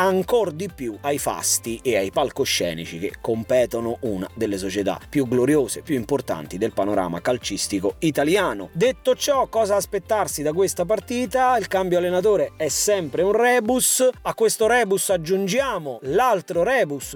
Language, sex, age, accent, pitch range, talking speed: Italian, male, 30-49, native, 145-240 Hz, 145 wpm